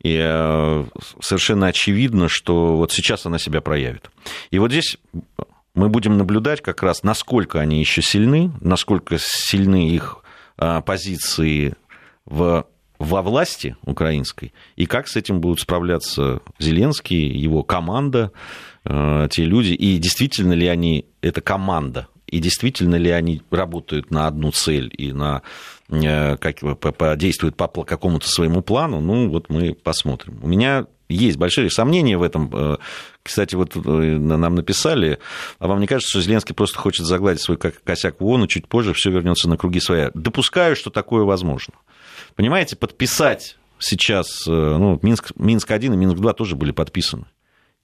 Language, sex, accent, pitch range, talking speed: Russian, male, native, 80-100 Hz, 145 wpm